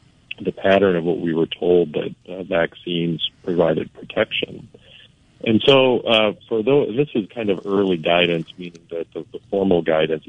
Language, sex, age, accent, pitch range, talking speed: English, male, 40-59, American, 85-95 Hz, 170 wpm